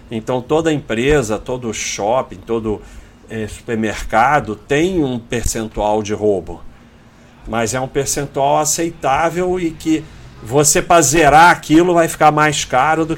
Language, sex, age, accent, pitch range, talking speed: Portuguese, male, 40-59, Brazilian, 110-135 Hz, 130 wpm